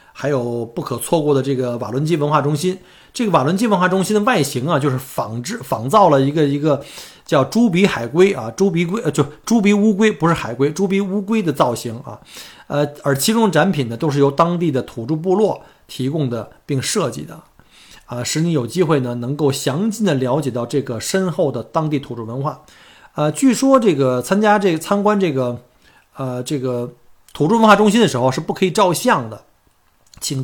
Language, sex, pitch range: Chinese, male, 130-170 Hz